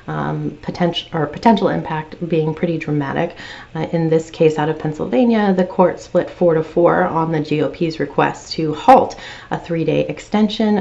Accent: American